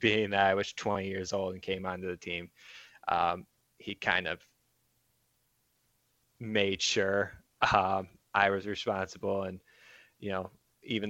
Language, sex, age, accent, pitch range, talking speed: English, male, 20-39, American, 95-105 Hz, 140 wpm